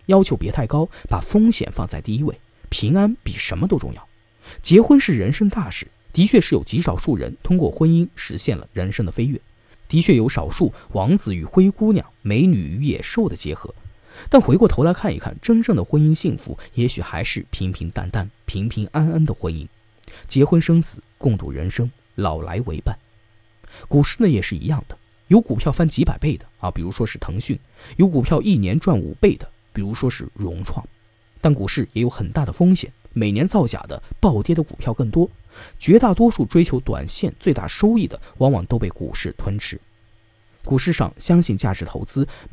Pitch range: 105-160 Hz